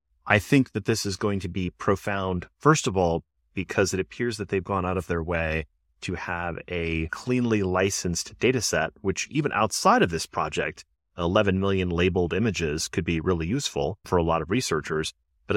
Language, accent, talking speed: English, American, 190 wpm